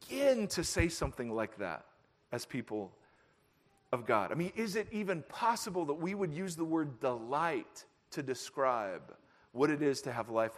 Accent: American